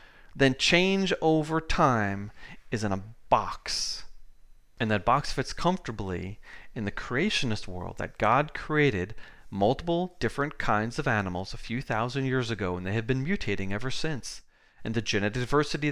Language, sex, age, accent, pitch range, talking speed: English, male, 30-49, American, 110-150 Hz, 155 wpm